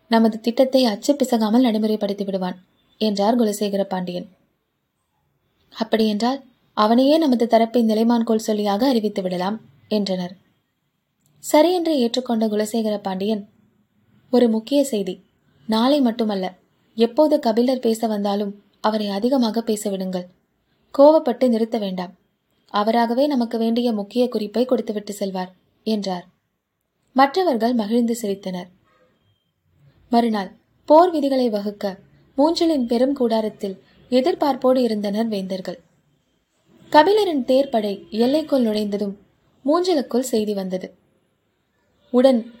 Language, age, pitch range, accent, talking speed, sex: Tamil, 20-39, 205-255 Hz, native, 95 wpm, female